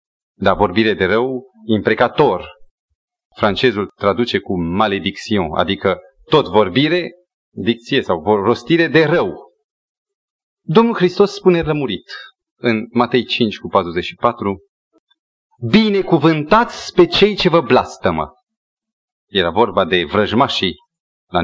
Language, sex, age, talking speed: Romanian, male, 30-49, 105 wpm